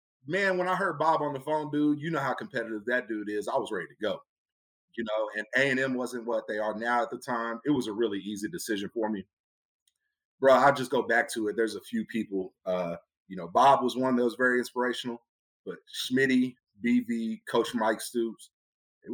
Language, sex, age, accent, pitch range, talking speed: English, male, 40-59, American, 115-155 Hz, 215 wpm